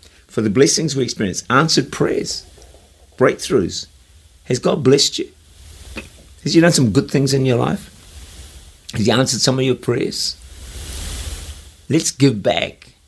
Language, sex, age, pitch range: English, male, 60-79, 80-125 Hz